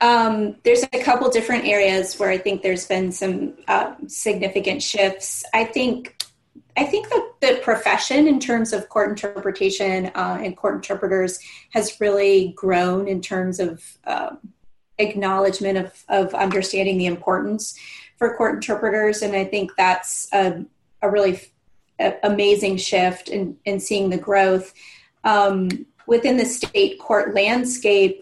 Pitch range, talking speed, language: 190-220 Hz, 145 wpm, English